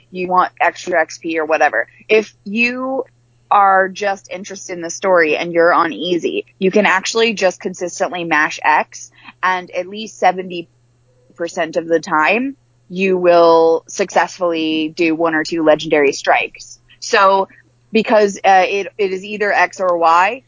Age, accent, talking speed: 20-39, American, 150 wpm